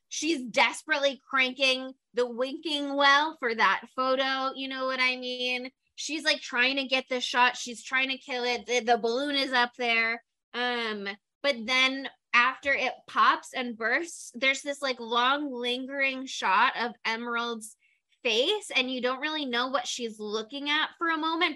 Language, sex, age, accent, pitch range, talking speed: English, female, 10-29, American, 235-280 Hz, 170 wpm